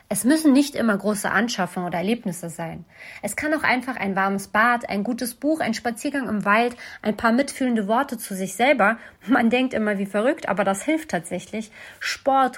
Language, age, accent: German, 30-49, German